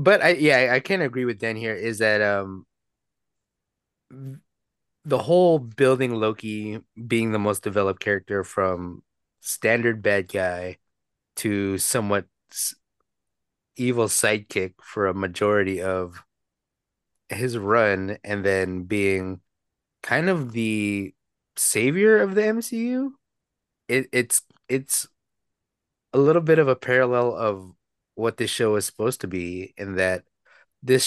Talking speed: 125 wpm